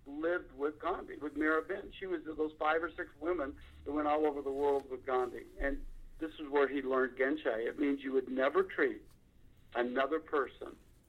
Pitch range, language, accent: 140-200 Hz, English, American